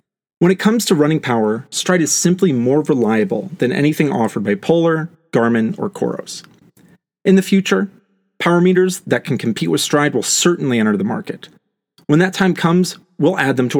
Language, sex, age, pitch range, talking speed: English, male, 30-49, 125-180 Hz, 185 wpm